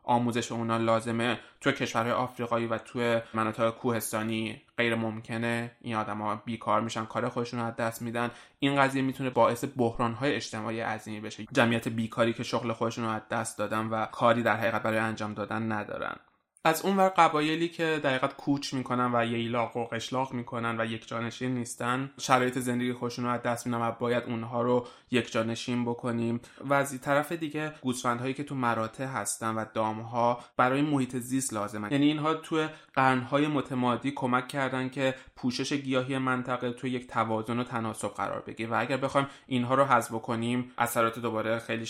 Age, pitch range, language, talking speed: 20-39, 115-125 Hz, Persian, 175 wpm